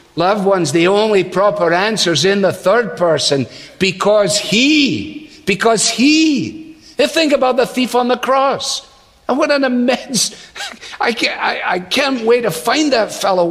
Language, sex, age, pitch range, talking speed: English, male, 50-69, 195-300 Hz, 170 wpm